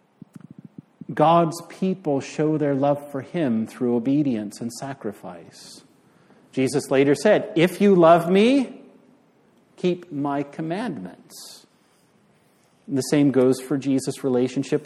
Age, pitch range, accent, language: 50-69, 130-170 Hz, American, English